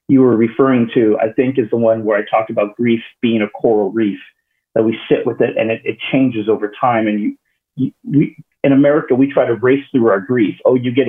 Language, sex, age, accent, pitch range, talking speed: English, male, 40-59, American, 115-150 Hz, 245 wpm